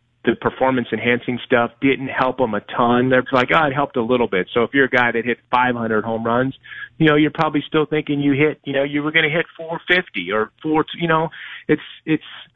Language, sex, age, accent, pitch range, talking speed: English, male, 30-49, American, 120-145 Hz, 230 wpm